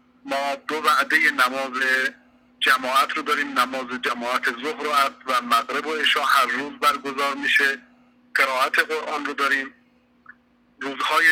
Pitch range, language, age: 135-165 Hz, Persian, 50-69